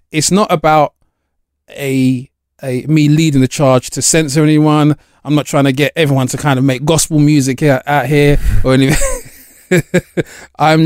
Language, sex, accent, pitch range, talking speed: English, male, British, 120-145 Hz, 170 wpm